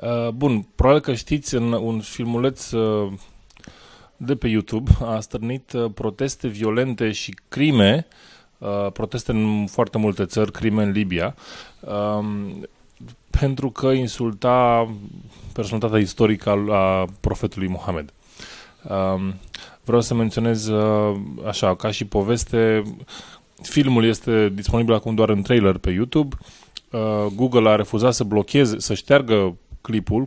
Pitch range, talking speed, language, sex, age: 100-125 Hz, 110 wpm, English, male, 20-39